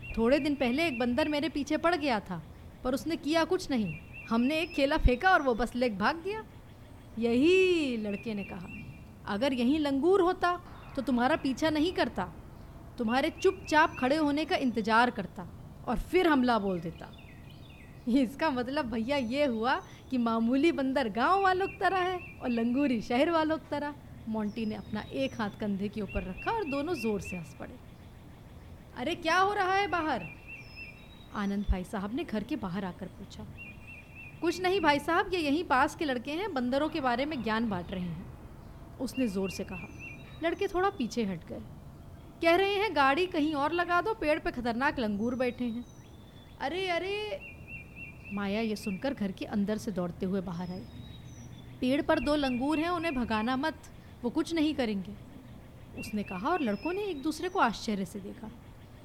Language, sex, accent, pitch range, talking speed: Hindi, female, native, 225-325 Hz, 180 wpm